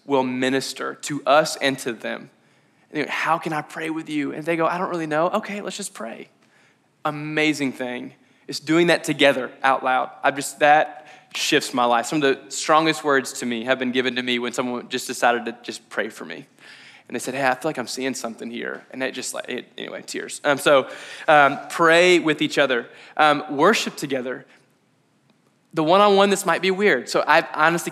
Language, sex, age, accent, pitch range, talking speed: English, male, 20-39, American, 130-160 Hz, 205 wpm